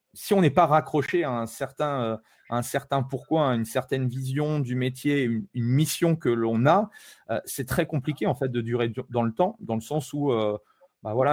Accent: French